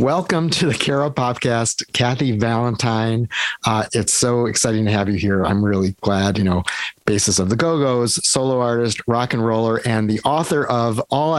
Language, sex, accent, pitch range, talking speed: English, male, American, 105-125 Hz, 185 wpm